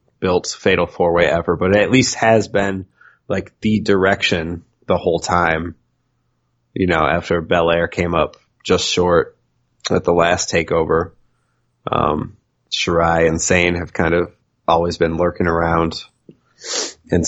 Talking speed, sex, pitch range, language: 140 wpm, male, 85-110 Hz, English